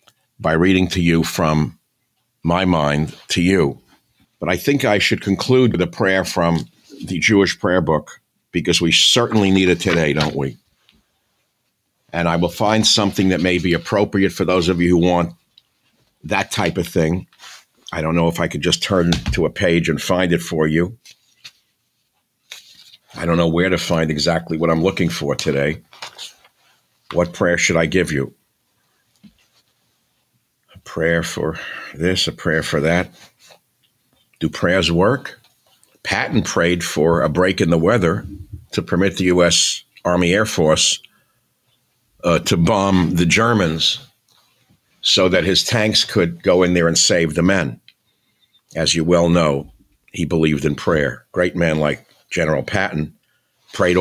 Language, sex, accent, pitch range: English, male, American, 80-95 Hz